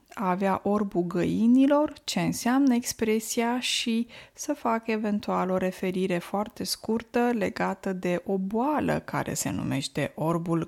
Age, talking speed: 20-39, 130 wpm